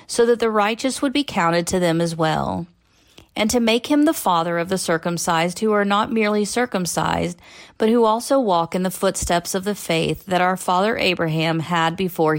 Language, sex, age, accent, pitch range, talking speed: English, female, 40-59, American, 165-220 Hz, 200 wpm